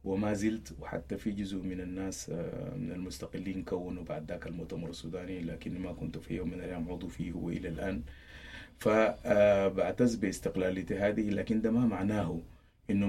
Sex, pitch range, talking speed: male, 90-105 Hz, 150 wpm